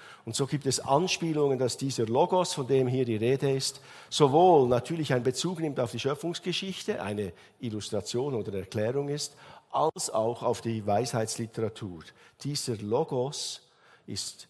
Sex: male